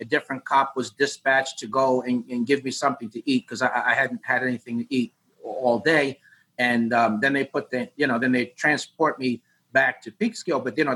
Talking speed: 230 wpm